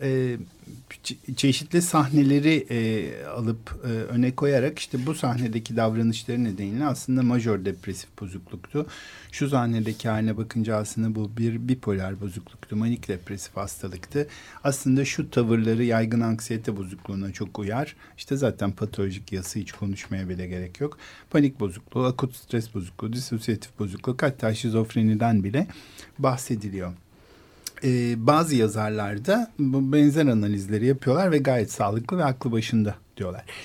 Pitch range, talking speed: 105-130 Hz, 125 wpm